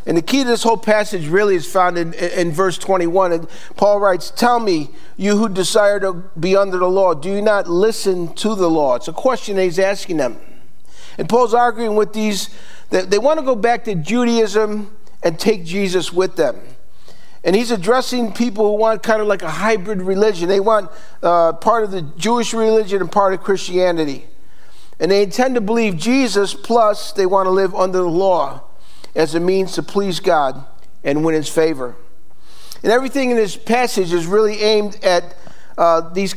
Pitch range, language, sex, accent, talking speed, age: 175-220 Hz, English, male, American, 195 wpm, 50-69